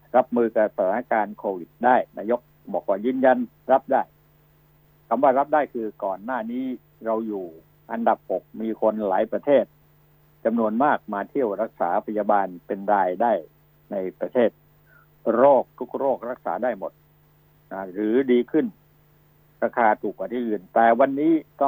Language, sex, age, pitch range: Thai, male, 60-79, 115-150 Hz